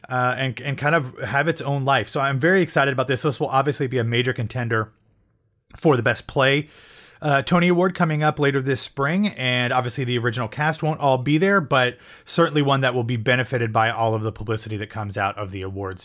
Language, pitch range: English, 125-165 Hz